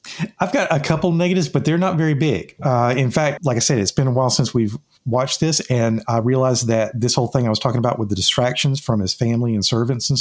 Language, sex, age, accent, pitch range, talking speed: English, male, 40-59, American, 120-155 Hz, 260 wpm